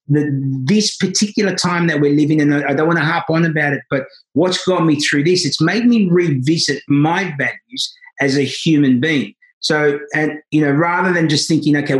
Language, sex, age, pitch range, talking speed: English, male, 30-49, 145-180 Hz, 205 wpm